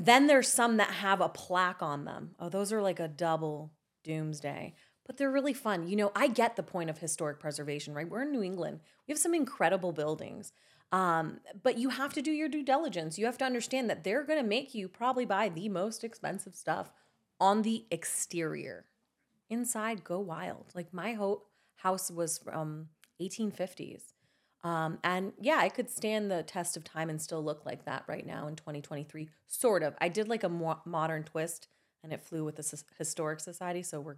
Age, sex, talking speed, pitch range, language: 30-49, female, 195 wpm, 160-215 Hz, English